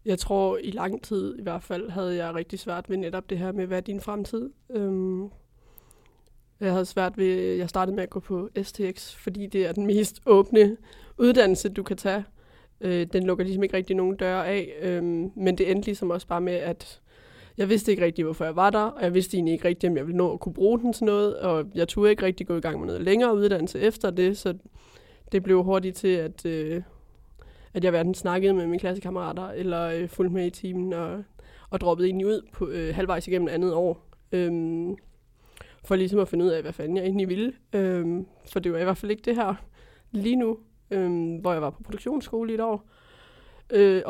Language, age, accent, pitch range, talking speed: English, 20-39, Danish, 180-210 Hz, 225 wpm